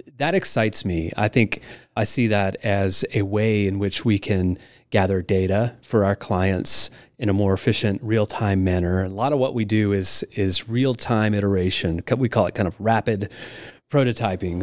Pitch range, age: 100-120 Hz, 30-49